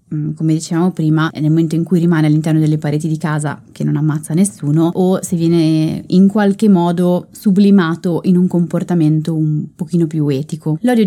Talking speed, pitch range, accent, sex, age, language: 180 wpm, 165-210 Hz, native, female, 20-39, Italian